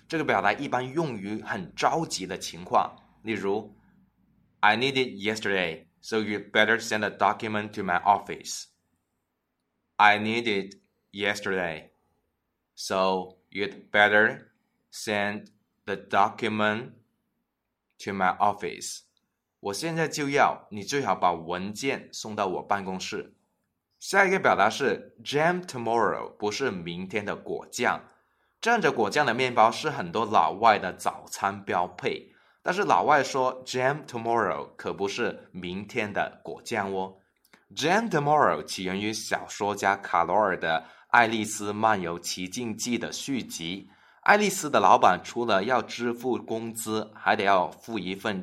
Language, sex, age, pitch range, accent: Chinese, male, 20-39, 100-115 Hz, native